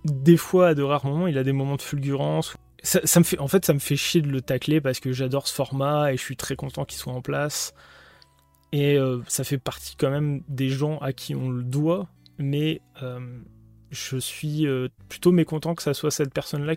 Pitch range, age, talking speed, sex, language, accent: 130-160 Hz, 20-39, 235 wpm, male, French, French